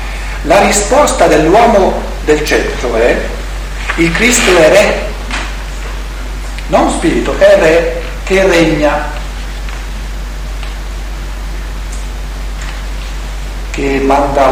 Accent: native